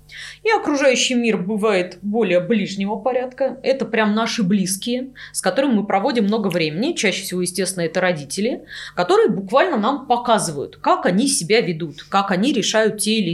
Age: 20-39